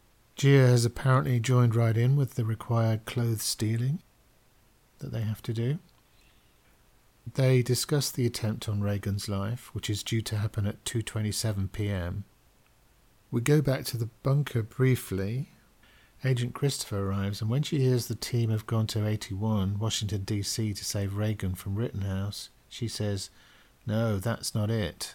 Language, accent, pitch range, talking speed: English, British, 100-120 Hz, 150 wpm